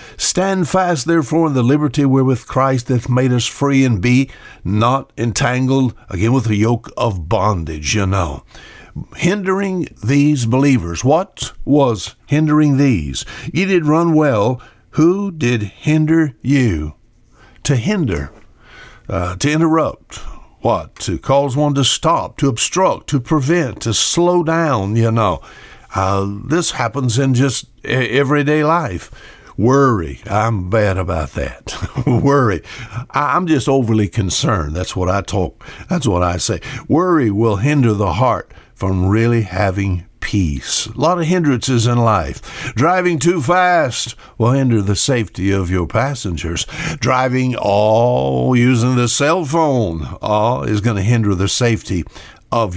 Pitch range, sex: 100-145 Hz, male